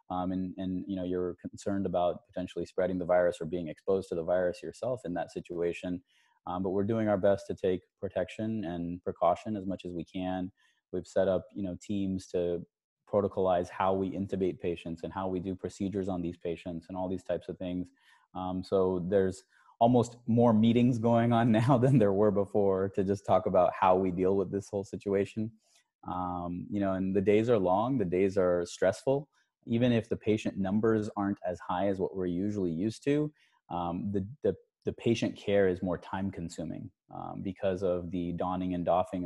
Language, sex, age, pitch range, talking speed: English, male, 20-39, 90-105 Hz, 200 wpm